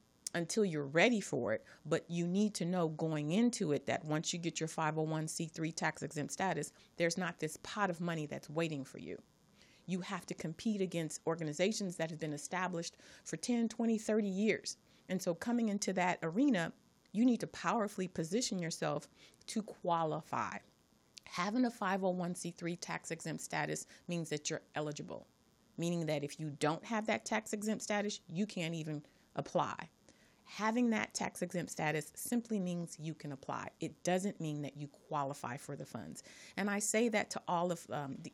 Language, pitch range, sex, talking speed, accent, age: English, 155-205 Hz, female, 175 wpm, American, 40-59